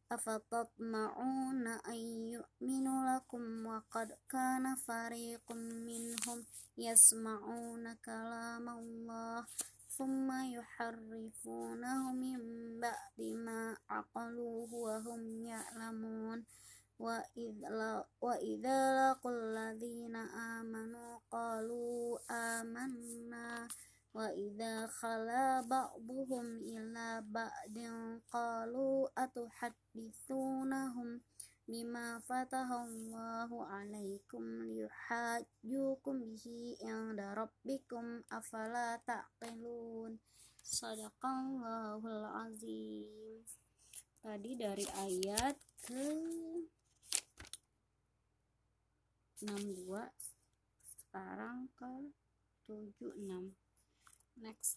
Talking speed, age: 55 wpm, 20-39